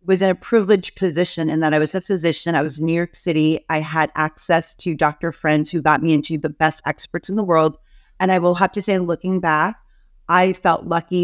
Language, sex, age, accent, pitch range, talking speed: English, female, 30-49, American, 155-190 Hz, 235 wpm